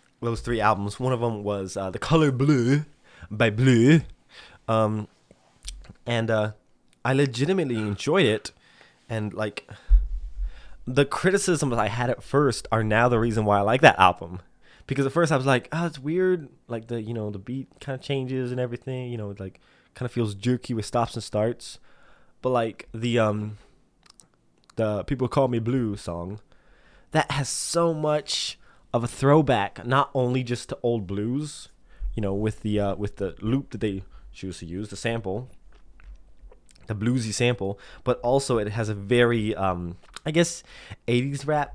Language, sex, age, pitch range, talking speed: English, male, 20-39, 105-140 Hz, 175 wpm